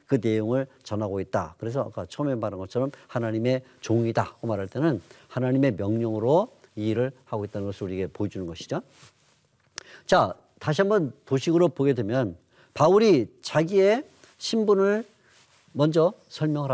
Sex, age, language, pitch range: male, 40-59, Korean, 110-165 Hz